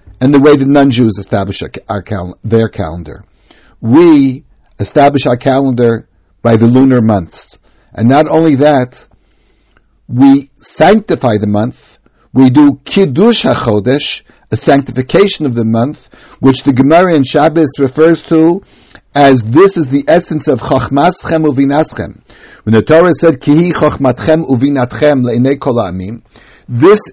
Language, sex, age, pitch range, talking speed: English, male, 60-79, 120-155 Hz, 125 wpm